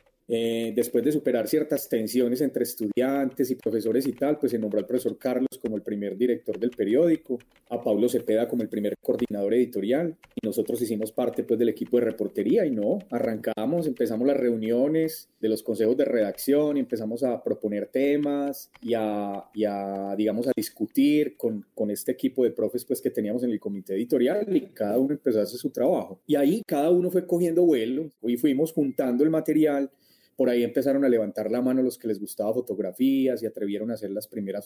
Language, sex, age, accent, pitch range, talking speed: Spanish, male, 30-49, Colombian, 115-145 Hz, 195 wpm